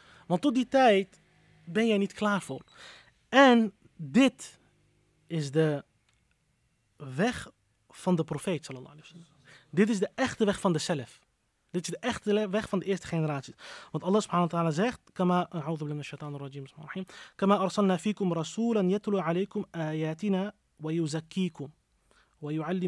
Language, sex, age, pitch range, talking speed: Dutch, male, 30-49, 155-200 Hz, 105 wpm